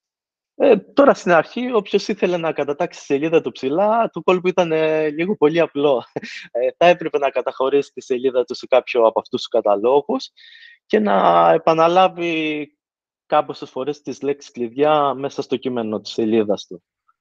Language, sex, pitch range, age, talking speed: Greek, male, 125-175 Hz, 20-39, 165 wpm